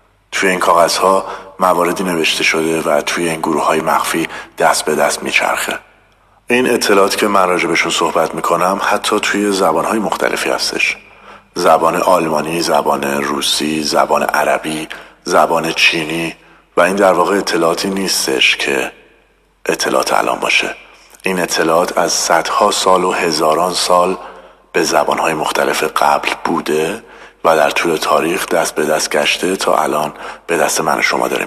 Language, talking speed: Persian, 140 wpm